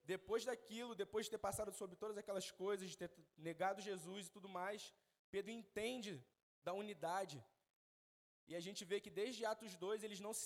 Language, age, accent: Gujarati, 20-39, Brazilian